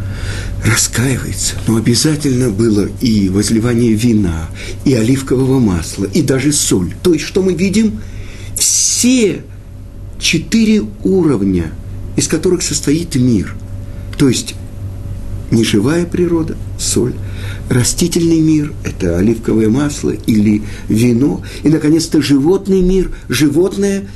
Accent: native